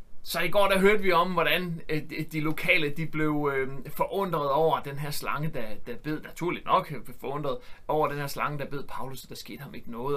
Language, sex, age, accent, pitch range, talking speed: Danish, male, 30-49, native, 140-170 Hz, 220 wpm